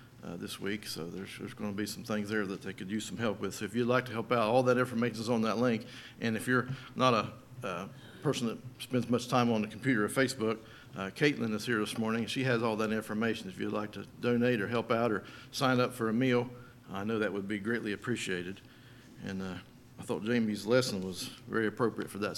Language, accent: English, American